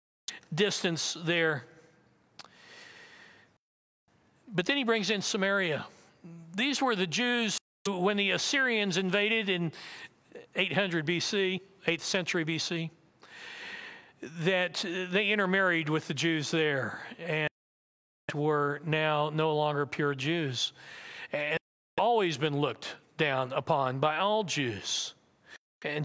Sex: male